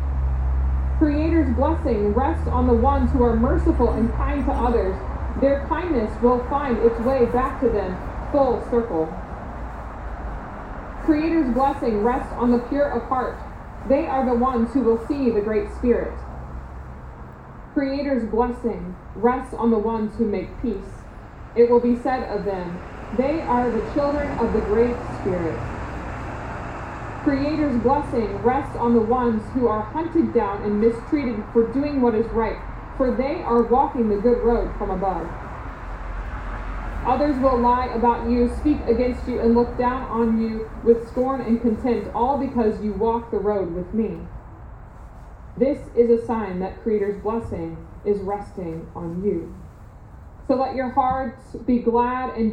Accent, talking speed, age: American, 155 wpm, 20-39